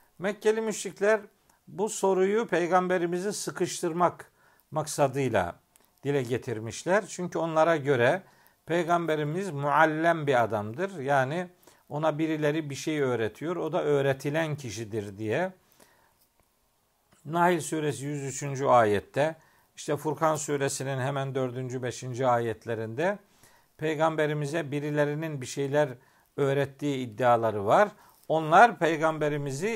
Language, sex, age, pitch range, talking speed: Turkish, male, 50-69, 135-170 Hz, 95 wpm